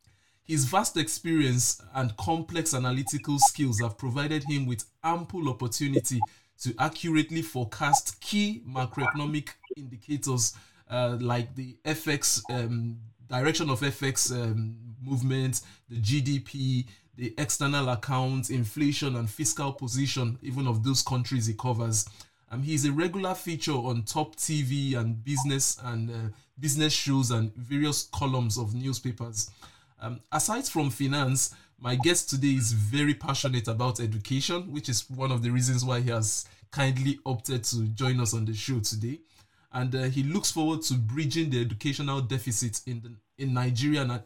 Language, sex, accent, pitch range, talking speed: English, male, Nigerian, 120-145 Hz, 145 wpm